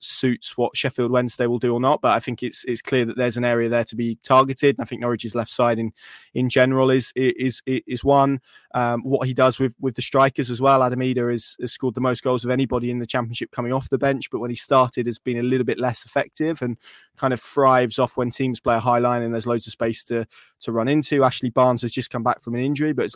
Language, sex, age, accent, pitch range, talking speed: English, male, 20-39, British, 120-135 Hz, 265 wpm